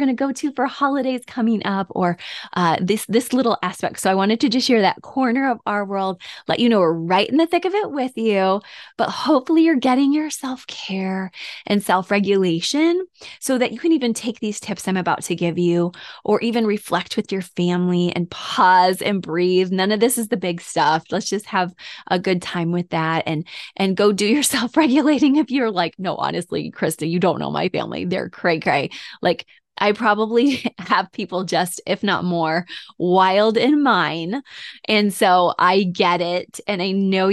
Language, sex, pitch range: English, female, 175-240 Hz